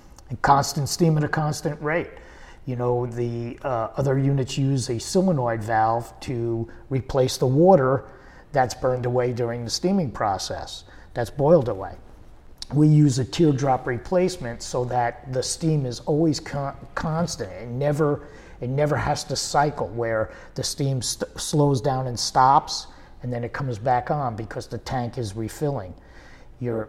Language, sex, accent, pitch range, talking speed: English, male, American, 115-145 Hz, 150 wpm